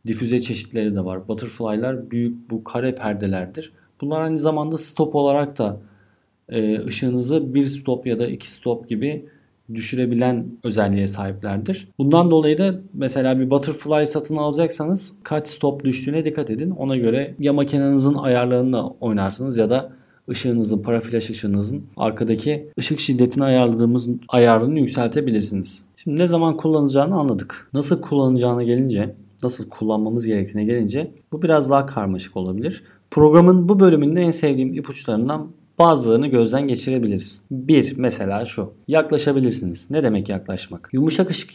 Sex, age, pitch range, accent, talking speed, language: male, 40-59, 110-150 Hz, native, 135 wpm, Turkish